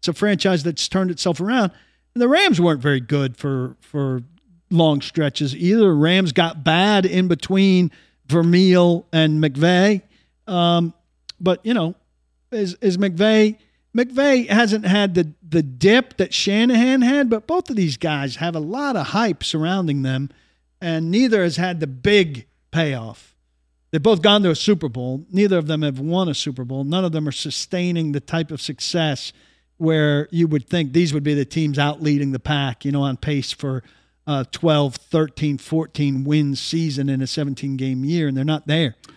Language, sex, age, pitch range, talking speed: English, male, 50-69, 145-195 Hz, 180 wpm